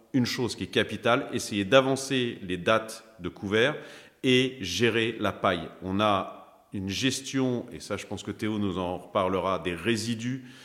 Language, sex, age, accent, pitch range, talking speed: French, male, 40-59, French, 100-125 Hz, 170 wpm